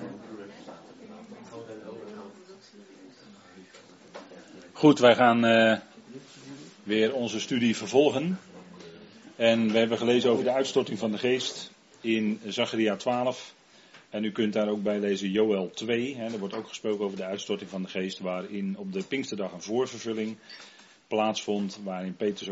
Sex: male